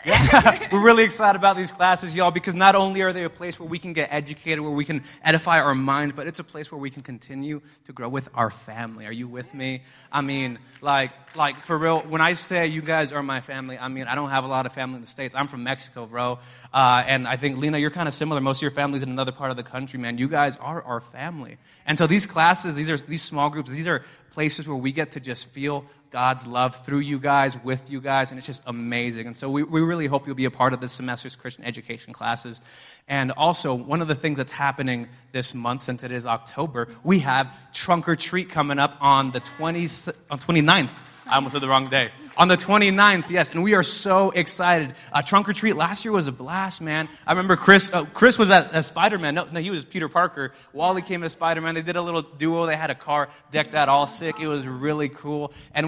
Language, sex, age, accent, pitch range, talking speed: English, male, 20-39, American, 130-165 Hz, 250 wpm